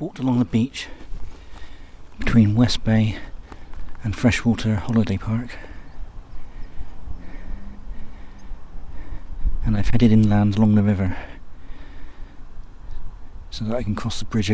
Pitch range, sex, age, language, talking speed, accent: 80-110 Hz, male, 50-69, English, 105 wpm, British